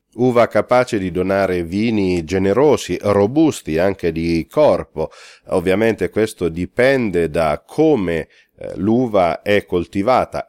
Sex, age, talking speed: male, 40-59, 105 wpm